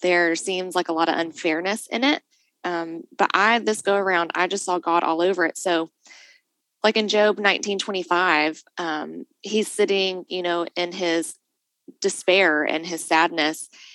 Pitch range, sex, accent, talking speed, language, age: 170-210 Hz, female, American, 170 wpm, English, 20-39